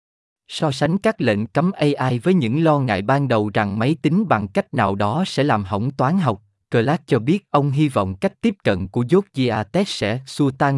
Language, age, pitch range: Vietnamese, 20-39, 110-155 Hz